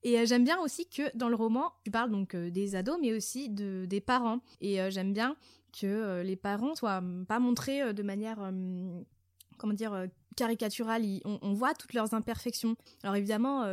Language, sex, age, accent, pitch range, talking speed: French, female, 20-39, French, 200-245 Hz, 175 wpm